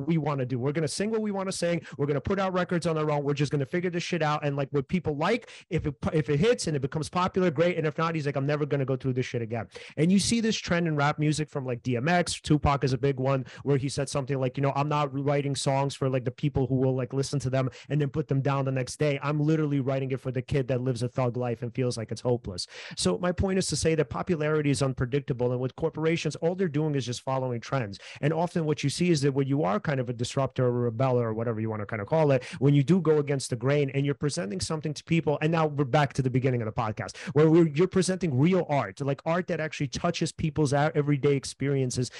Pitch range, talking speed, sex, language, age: 135-165 Hz, 290 wpm, male, English, 30-49